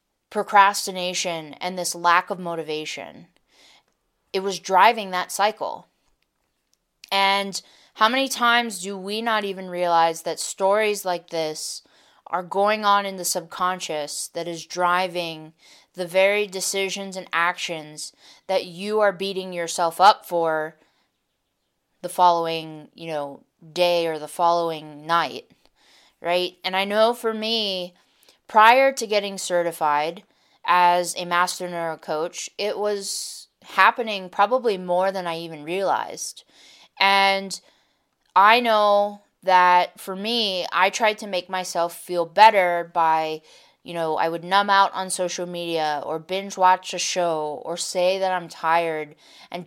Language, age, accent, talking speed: English, 20-39, American, 135 wpm